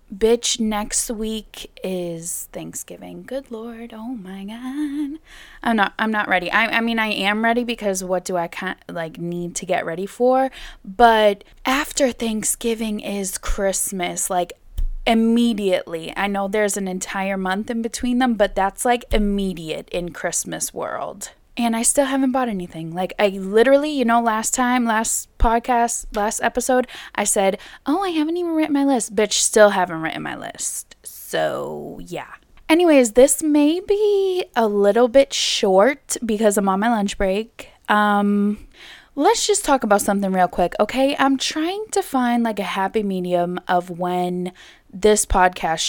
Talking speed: 160 wpm